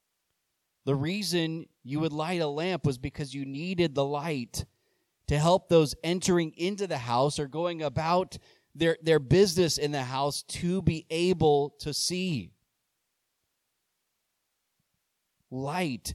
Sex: male